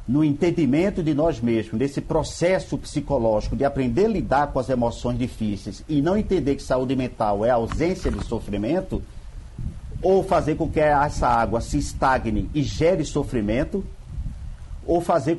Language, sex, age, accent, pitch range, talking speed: Portuguese, male, 50-69, Brazilian, 120-160 Hz, 150 wpm